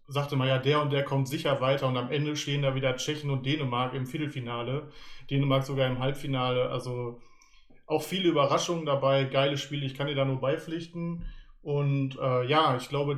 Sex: male